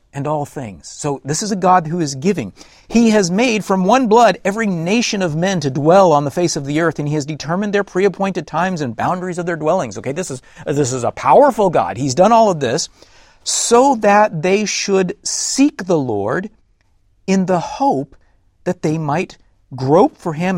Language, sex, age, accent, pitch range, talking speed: English, male, 40-59, American, 130-190 Hz, 205 wpm